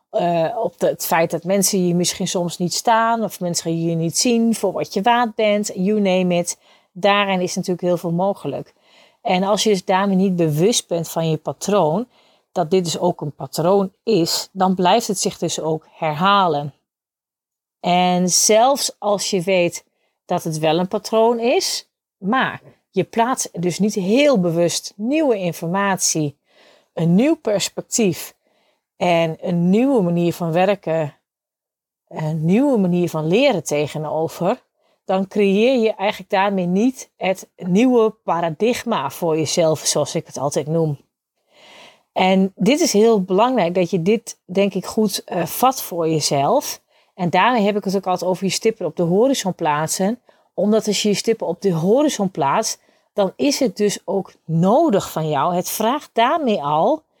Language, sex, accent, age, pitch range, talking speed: Dutch, female, Dutch, 40-59, 170-220 Hz, 165 wpm